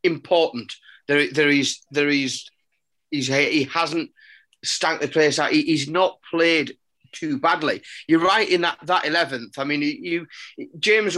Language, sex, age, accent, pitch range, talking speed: English, male, 30-49, British, 145-200 Hz, 155 wpm